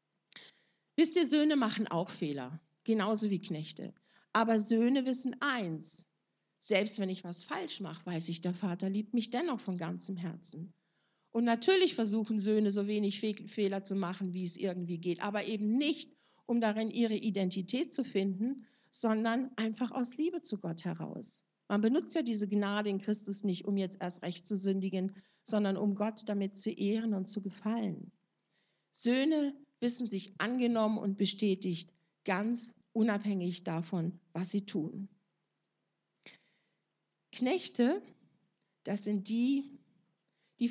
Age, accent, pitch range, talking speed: 50-69, German, 190-245 Hz, 145 wpm